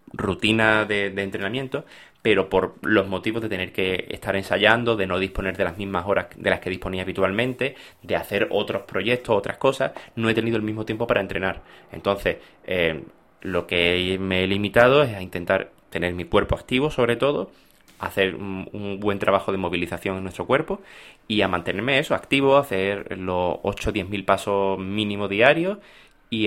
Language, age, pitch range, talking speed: Spanish, 20-39, 90-115 Hz, 175 wpm